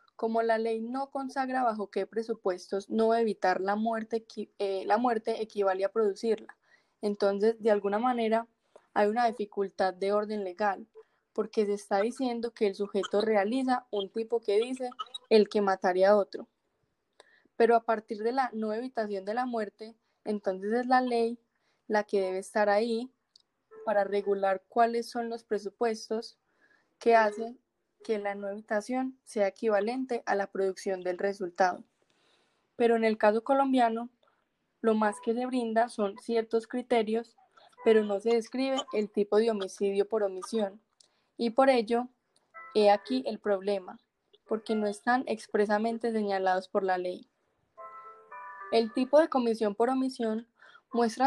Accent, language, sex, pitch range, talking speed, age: Colombian, Spanish, female, 205-240 Hz, 150 wpm, 10-29